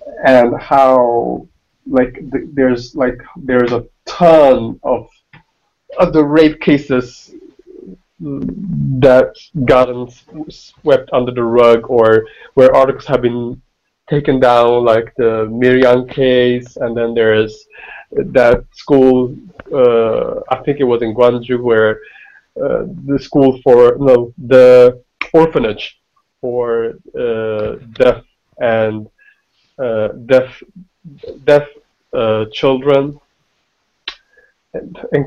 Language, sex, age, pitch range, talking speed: English, male, 30-49, 125-155 Hz, 100 wpm